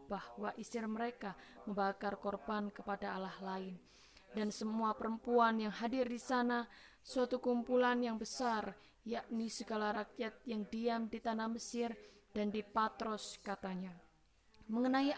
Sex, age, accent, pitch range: female, 20-39, native, 210-235 Hz